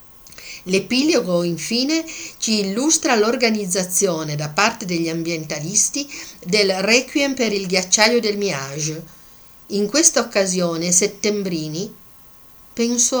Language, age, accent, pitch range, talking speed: Italian, 50-69, native, 170-230 Hz, 95 wpm